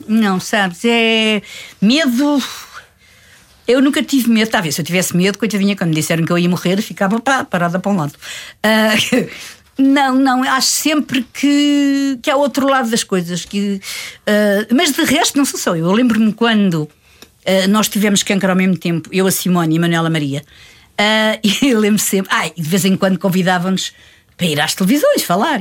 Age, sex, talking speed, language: 50-69, female, 190 wpm, Portuguese